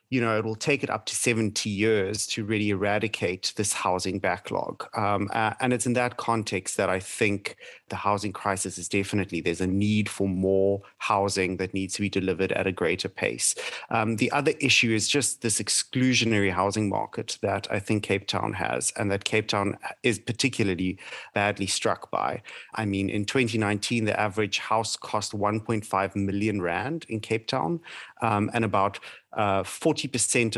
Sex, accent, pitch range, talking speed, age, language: male, German, 100-115 Hz, 175 wpm, 30-49, English